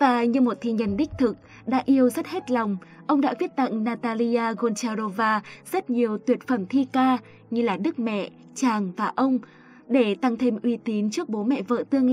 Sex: female